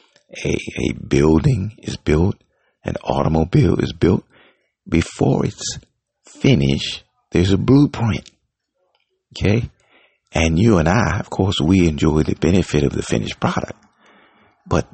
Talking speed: 125 wpm